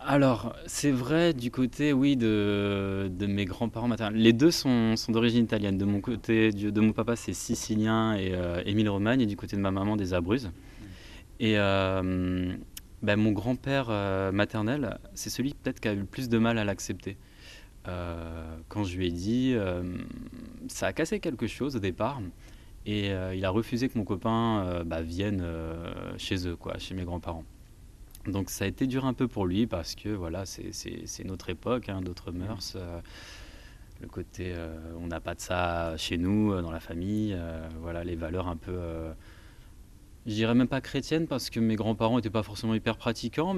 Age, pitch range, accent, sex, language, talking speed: 20-39, 90-115 Hz, French, male, French, 195 wpm